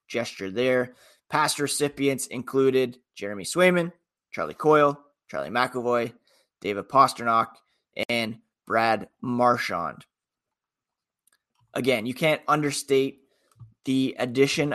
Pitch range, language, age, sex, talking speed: 125-150 Hz, English, 20-39, male, 90 wpm